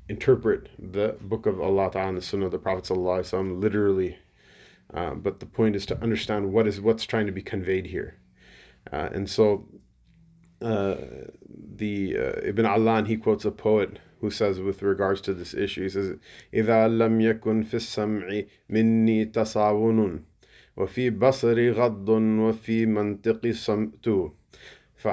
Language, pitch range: English, 95-115 Hz